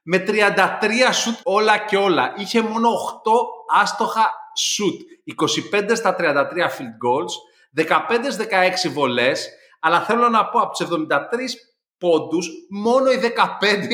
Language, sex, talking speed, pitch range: Greek, male, 125 wpm, 140-210 Hz